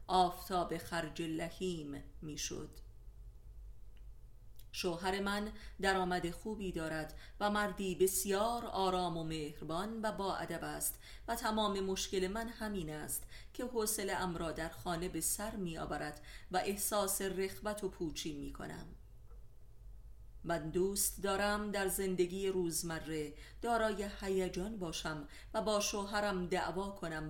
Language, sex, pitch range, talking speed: Persian, female, 155-195 Hz, 125 wpm